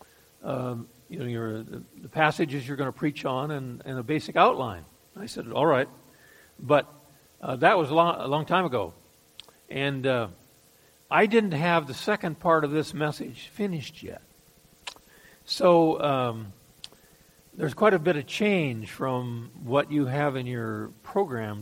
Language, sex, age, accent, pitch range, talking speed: English, male, 60-79, American, 110-155 Hz, 160 wpm